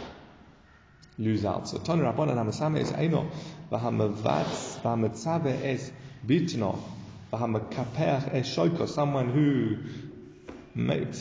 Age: 30-49